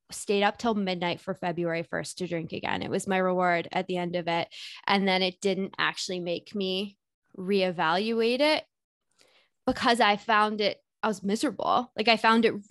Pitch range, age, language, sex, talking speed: 185-225 Hz, 10-29, English, female, 185 wpm